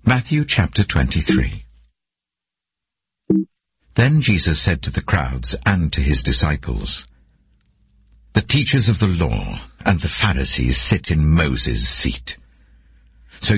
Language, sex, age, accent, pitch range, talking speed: English, male, 60-79, British, 65-100 Hz, 115 wpm